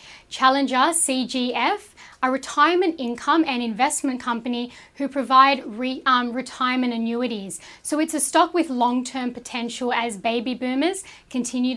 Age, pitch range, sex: 10-29, 235-270 Hz, female